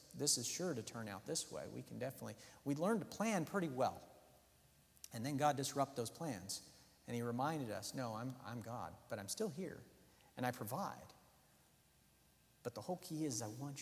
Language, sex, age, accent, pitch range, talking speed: English, male, 50-69, American, 135-185 Hz, 195 wpm